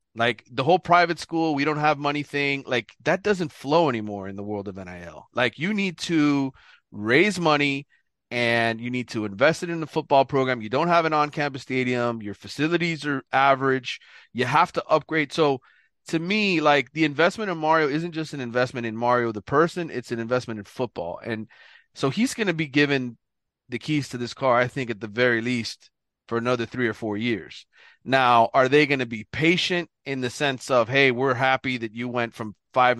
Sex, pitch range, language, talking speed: male, 115-155 Hz, English, 210 wpm